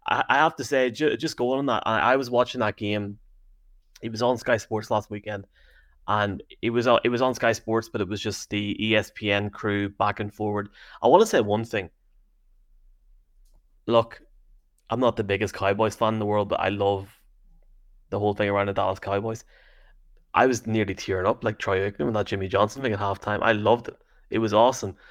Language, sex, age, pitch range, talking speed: English, male, 20-39, 100-115 Hz, 205 wpm